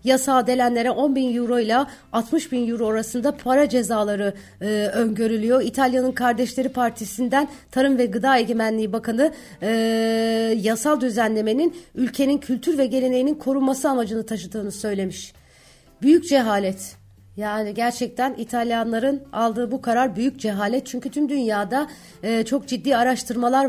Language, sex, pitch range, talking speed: Turkish, female, 210-255 Hz, 125 wpm